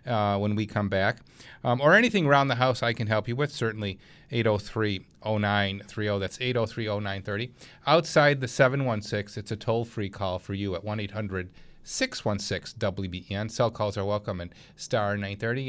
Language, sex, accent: English, male, American